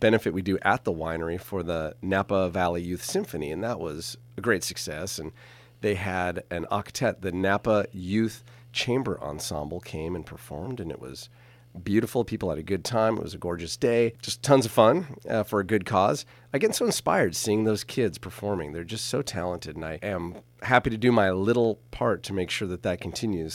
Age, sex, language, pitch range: 40-59, male, English, 90-120 Hz